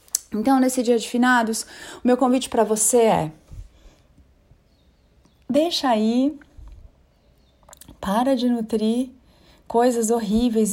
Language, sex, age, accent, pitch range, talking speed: Portuguese, female, 30-49, Brazilian, 220-280 Hz, 100 wpm